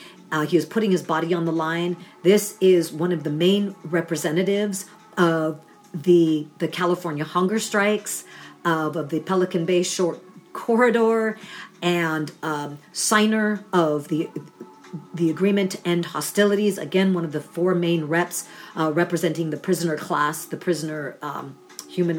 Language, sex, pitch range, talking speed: English, female, 150-175 Hz, 150 wpm